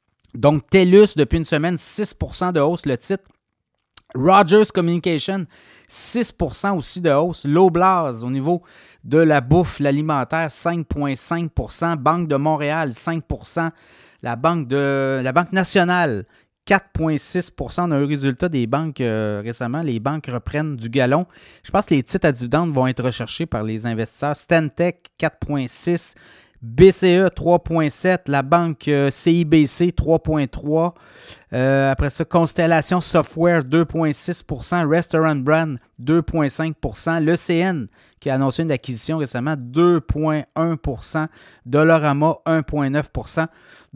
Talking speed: 120 wpm